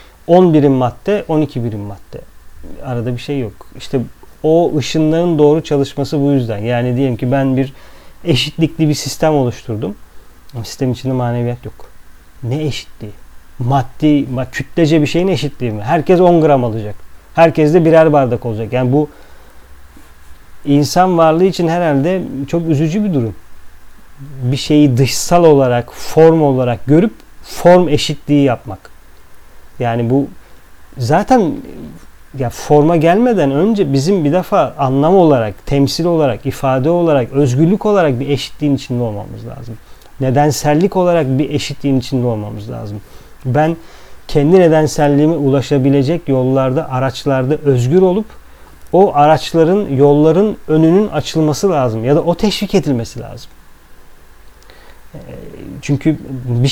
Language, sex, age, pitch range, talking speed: Turkish, male, 40-59, 120-160 Hz, 125 wpm